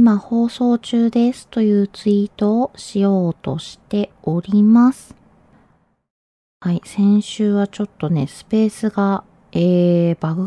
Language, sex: Japanese, female